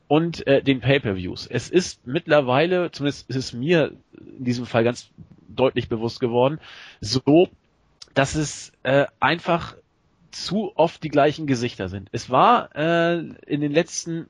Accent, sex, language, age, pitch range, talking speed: German, male, German, 40-59, 130-165 Hz, 145 wpm